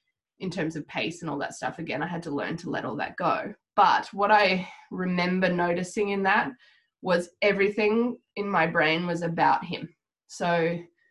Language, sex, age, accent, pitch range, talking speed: English, female, 20-39, Australian, 175-220 Hz, 185 wpm